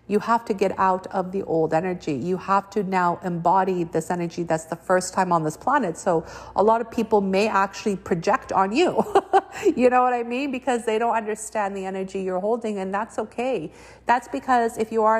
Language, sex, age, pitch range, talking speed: English, female, 50-69, 165-210 Hz, 215 wpm